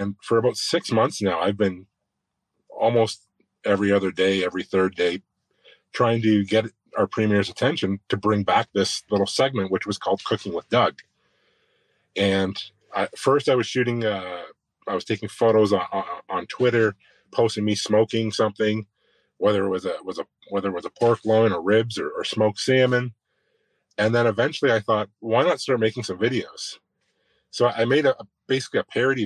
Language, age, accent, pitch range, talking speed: English, 30-49, American, 100-120 Hz, 175 wpm